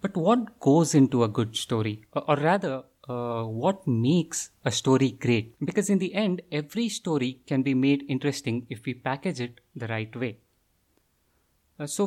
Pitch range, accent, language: 120-175 Hz, Indian, English